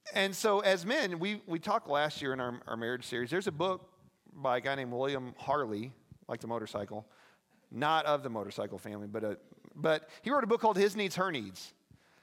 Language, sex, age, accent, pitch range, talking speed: English, male, 40-59, American, 140-200 Hz, 210 wpm